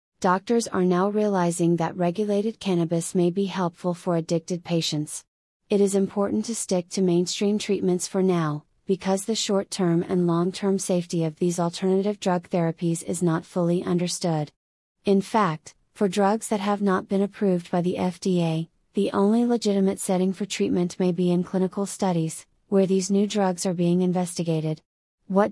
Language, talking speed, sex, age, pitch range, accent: English, 160 wpm, female, 30-49, 175-200 Hz, American